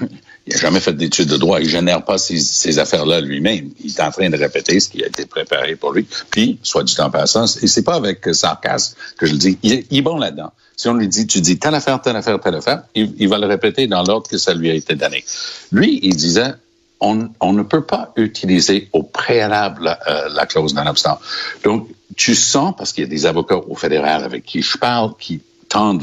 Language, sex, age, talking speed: French, male, 60-79, 240 wpm